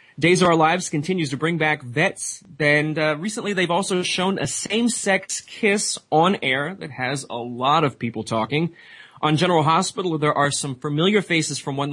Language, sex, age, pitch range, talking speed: English, male, 30-49, 140-180 Hz, 185 wpm